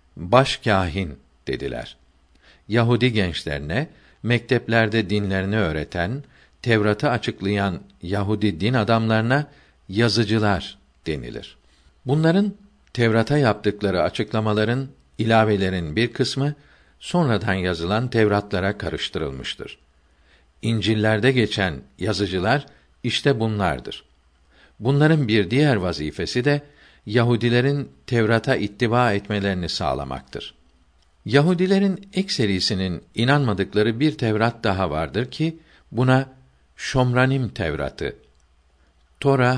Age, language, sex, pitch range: 50-69, Turkish, male, 85-120 Hz